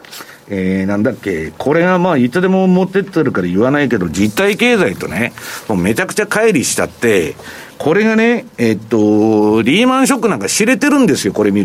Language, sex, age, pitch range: Japanese, male, 50-69, 115-190 Hz